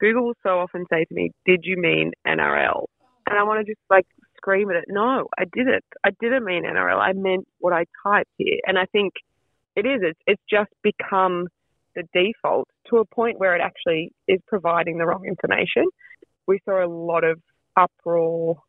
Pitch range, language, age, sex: 165-205 Hz, English, 20-39, female